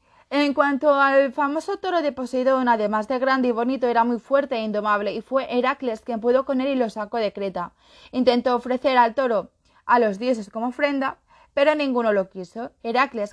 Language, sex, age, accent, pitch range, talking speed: Spanish, female, 20-39, Spanish, 220-270 Hz, 195 wpm